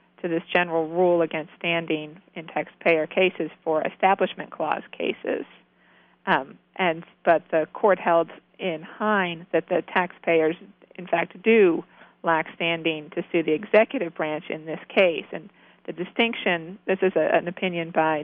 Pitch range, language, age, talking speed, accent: 160-185 Hz, English, 50-69, 145 wpm, American